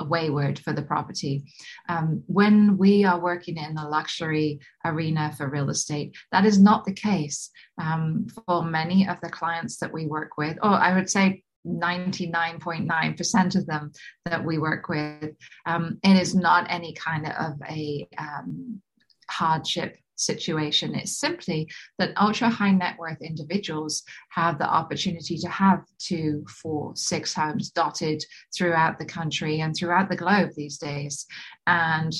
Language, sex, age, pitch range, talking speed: English, female, 30-49, 155-185 Hz, 150 wpm